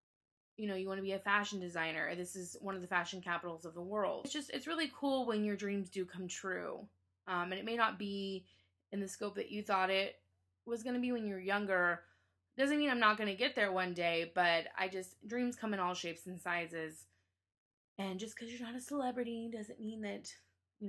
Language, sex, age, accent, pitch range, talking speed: English, female, 20-39, American, 175-220 Hz, 235 wpm